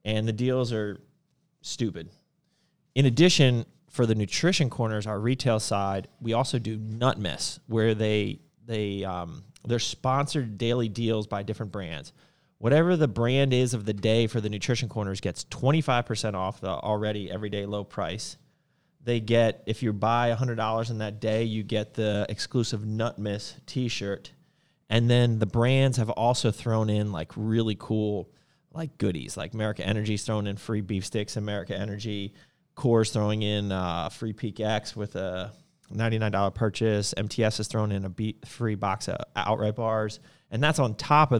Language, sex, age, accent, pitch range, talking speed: English, male, 30-49, American, 105-125 Hz, 165 wpm